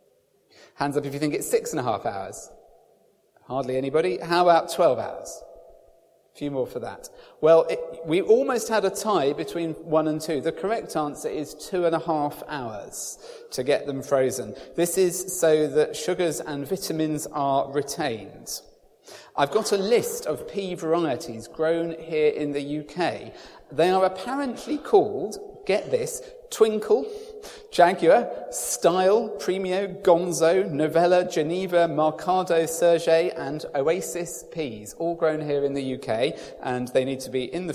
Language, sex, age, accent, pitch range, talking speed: English, male, 40-59, British, 150-215 Hz, 155 wpm